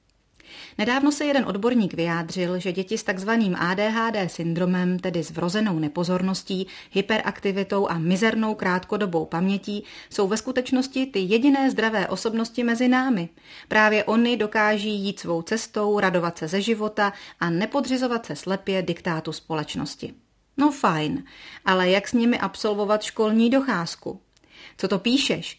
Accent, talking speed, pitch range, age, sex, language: native, 135 wpm, 180-230 Hz, 30-49, female, Czech